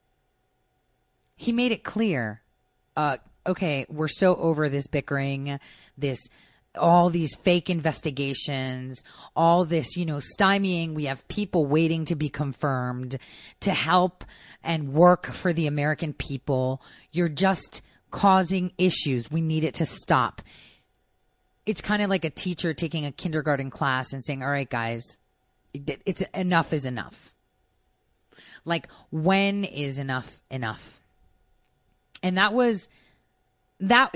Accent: American